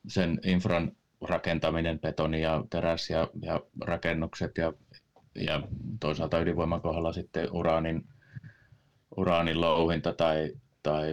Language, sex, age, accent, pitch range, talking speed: Finnish, male, 30-49, native, 75-85 Hz, 95 wpm